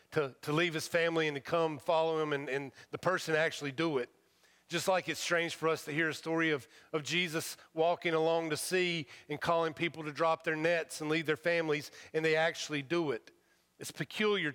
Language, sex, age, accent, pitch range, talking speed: English, male, 40-59, American, 150-185 Hz, 215 wpm